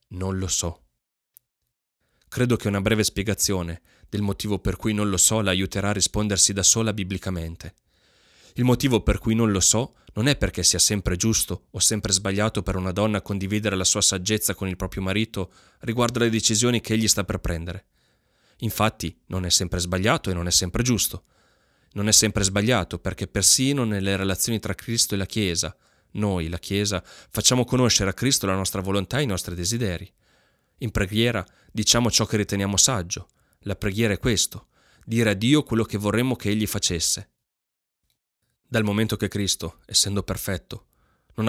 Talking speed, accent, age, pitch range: 175 wpm, native, 30-49, 95-110 Hz